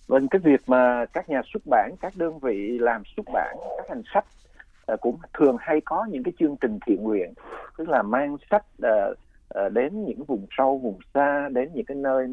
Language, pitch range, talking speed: Vietnamese, 115-170 Hz, 200 wpm